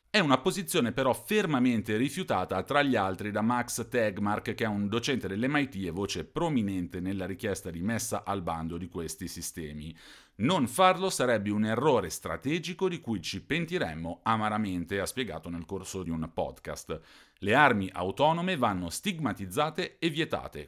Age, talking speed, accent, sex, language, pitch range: 40-59, 155 wpm, native, male, Italian, 95-135 Hz